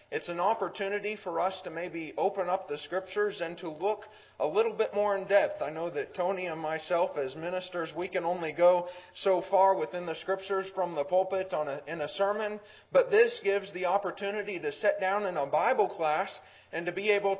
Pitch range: 165-200 Hz